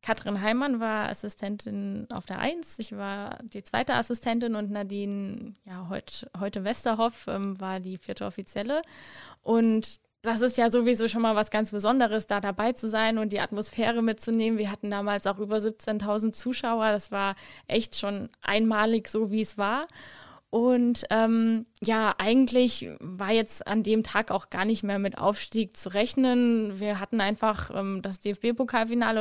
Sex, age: female, 20-39